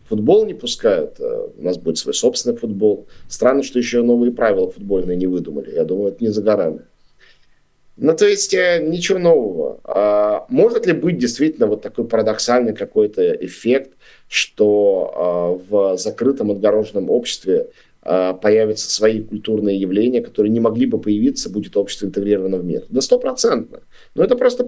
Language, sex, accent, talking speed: Russian, male, native, 150 wpm